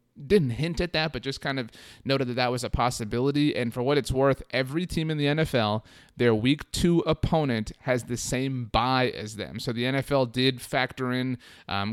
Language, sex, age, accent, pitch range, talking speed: English, male, 30-49, American, 110-135 Hz, 205 wpm